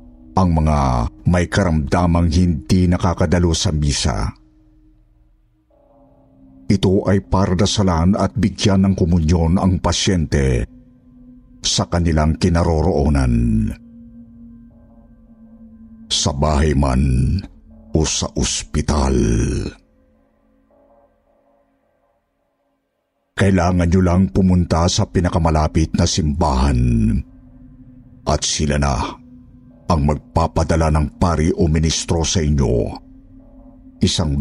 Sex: male